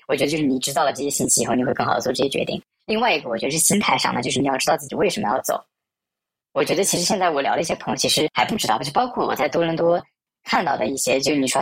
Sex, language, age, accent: male, Chinese, 20-39, native